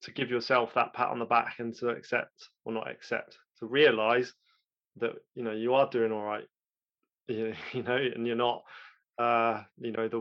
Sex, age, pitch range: male, 20-39, 115-125 Hz